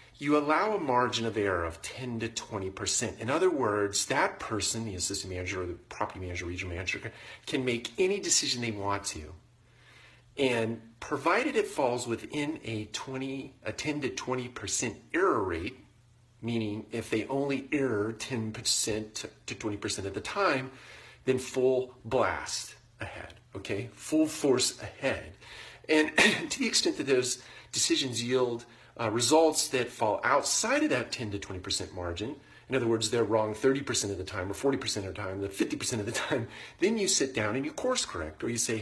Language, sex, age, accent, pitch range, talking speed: English, male, 40-59, American, 100-130 Hz, 170 wpm